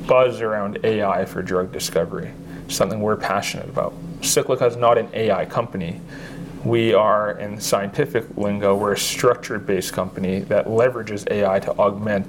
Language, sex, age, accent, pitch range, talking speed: English, male, 30-49, American, 100-120 Hz, 150 wpm